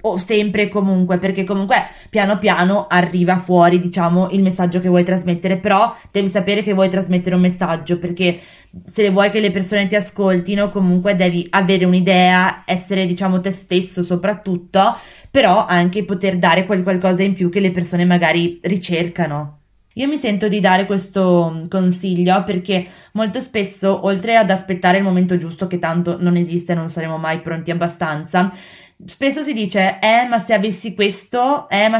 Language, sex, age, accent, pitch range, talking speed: Italian, female, 20-39, native, 180-210 Hz, 170 wpm